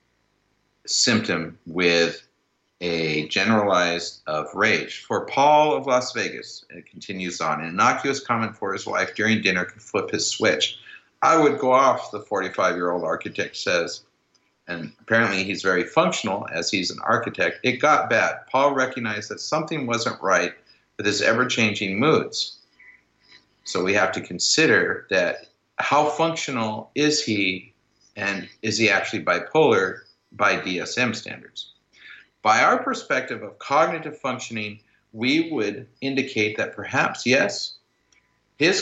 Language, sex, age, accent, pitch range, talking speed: English, male, 50-69, American, 95-140 Hz, 140 wpm